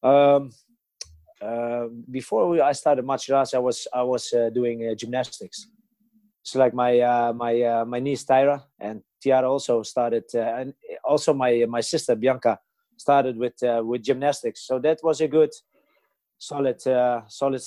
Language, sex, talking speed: English, male, 165 wpm